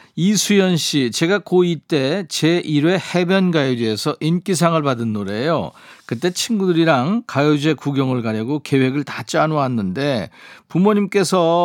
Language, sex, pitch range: Korean, male, 130-170 Hz